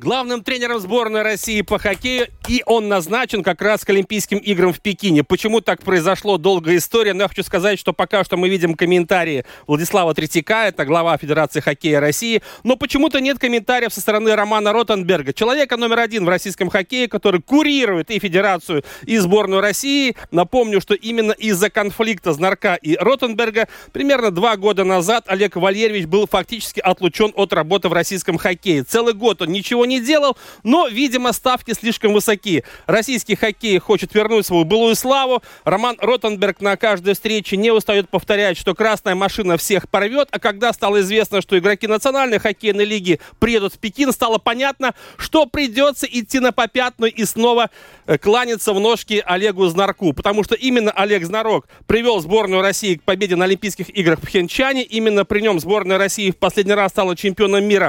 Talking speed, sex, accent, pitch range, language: 170 wpm, male, native, 190-230 Hz, Russian